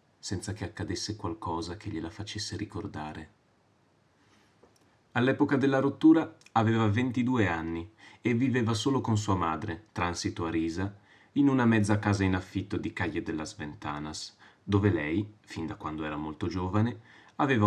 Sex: male